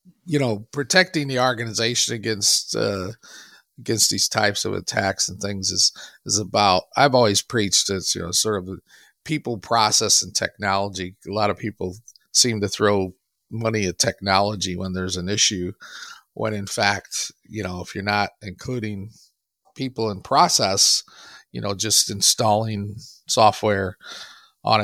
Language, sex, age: English, male, 40-59